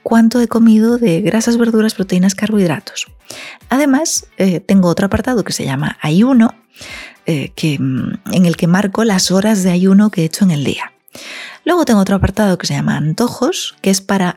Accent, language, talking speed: Spanish, Spanish, 185 wpm